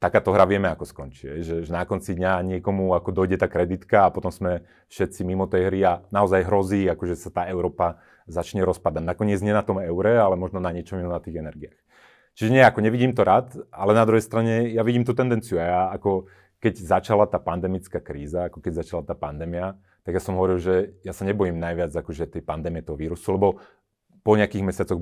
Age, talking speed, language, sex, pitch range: 30-49, 215 wpm, Slovak, male, 85-100 Hz